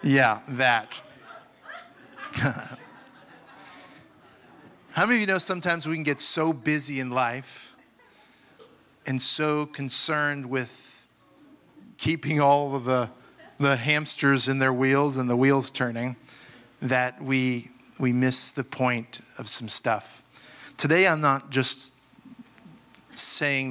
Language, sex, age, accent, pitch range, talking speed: English, male, 50-69, American, 125-140 Hz, 115 wpm